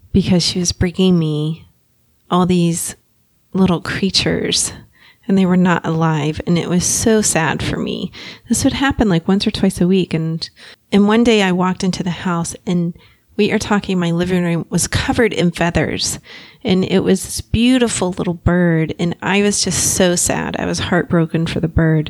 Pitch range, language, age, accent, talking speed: 165-210 Hz, English, 30-49, American, 185 wpm